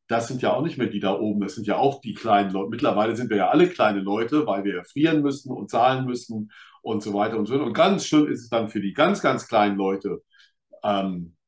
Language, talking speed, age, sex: German, 260 wpm, 50-69, male